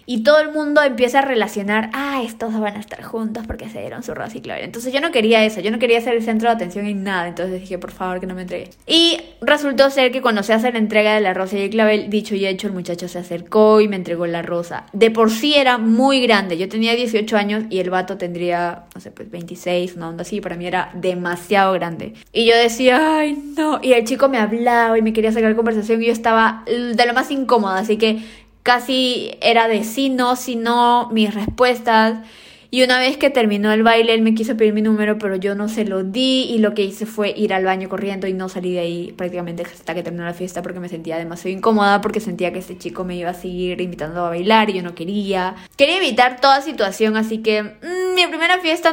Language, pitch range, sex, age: Spanish, 185-245 Hz, female, 20-39